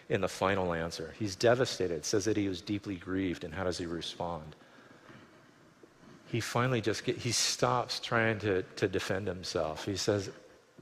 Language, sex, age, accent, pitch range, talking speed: English, male, 40-59, American, 90-115 Hz, 160 wpm